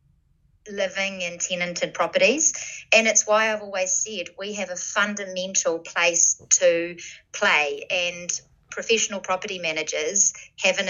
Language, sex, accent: English, female, Australian